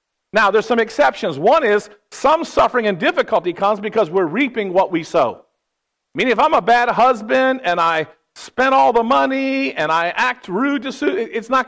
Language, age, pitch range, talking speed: English, 50-69, 190-255 Hz, 185 wpm